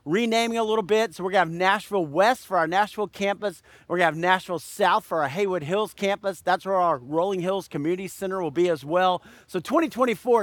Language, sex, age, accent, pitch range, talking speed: English, male, 50-69, American, 165-215 Hz, 215 wpm